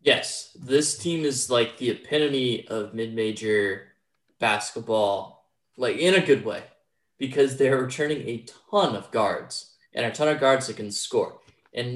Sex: male